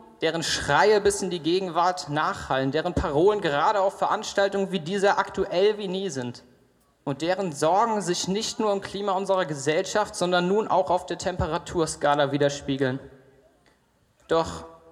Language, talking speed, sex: German, 145 wpm, male